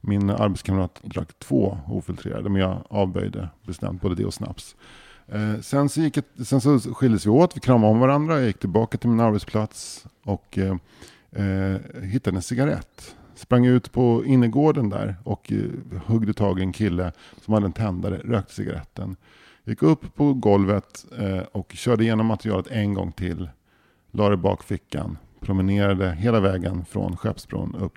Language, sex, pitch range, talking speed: English, male, 95-120 Hz, 165 wpm